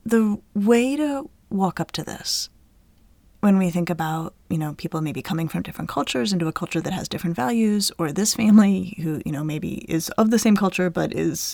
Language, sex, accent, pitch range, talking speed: English, female, American, 175-225 Hz, 210 wpm